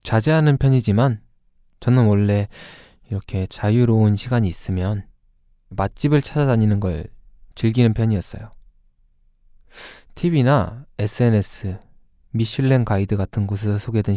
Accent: native